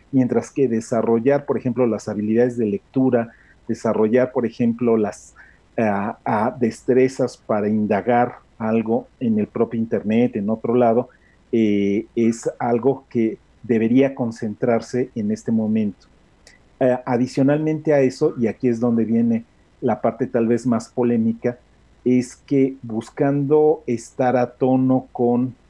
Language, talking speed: Spanish, 135 wpm